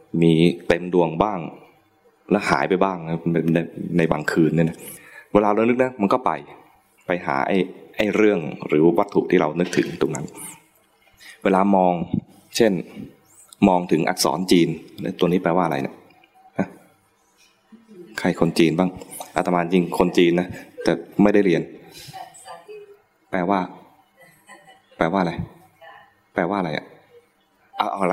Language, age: English, 20-39